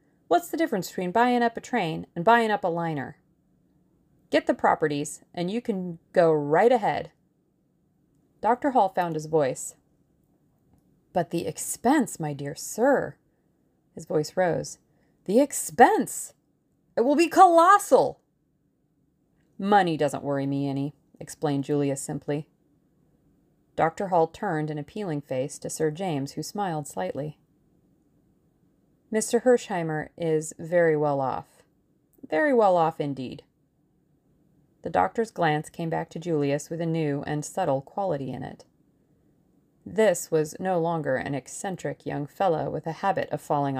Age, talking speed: 30-49, 135 wpm